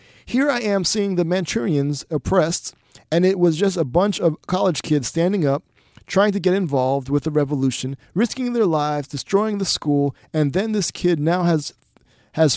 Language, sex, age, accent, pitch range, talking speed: English, male, 30-49, American, 140-185 Hz, 180 wpm